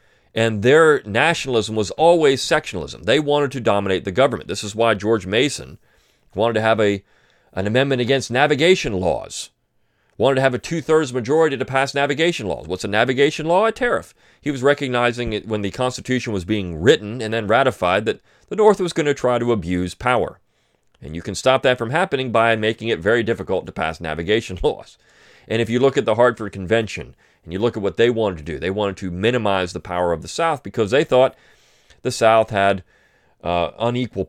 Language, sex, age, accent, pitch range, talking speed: English, male, 40-59, American, 95-130 Hz, 200 wpm